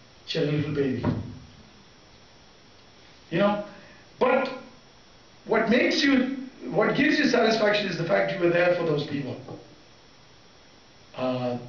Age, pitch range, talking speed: 50-69, 160-215 Hz, 120 wpm